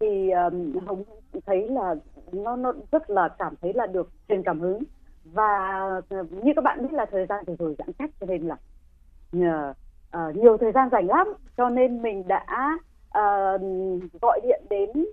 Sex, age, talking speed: female, 20-39, 185 wpm